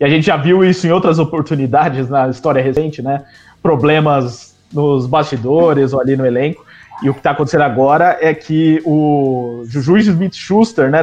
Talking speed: 175 wpm